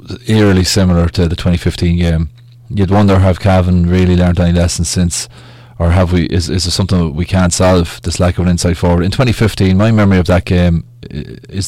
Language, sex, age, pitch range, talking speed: English, male, 20-39, 85-105 Hz, 205 wpm